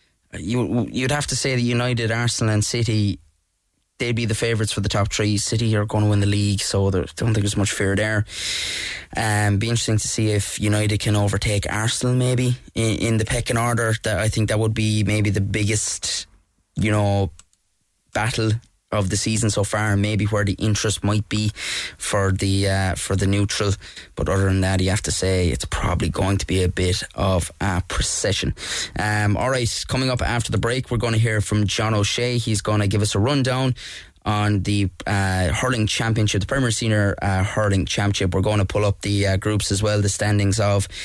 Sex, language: male, English